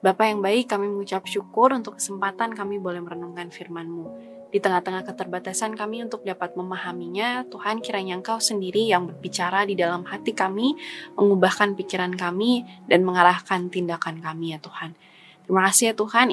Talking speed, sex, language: 155 wpm, female, Indonesian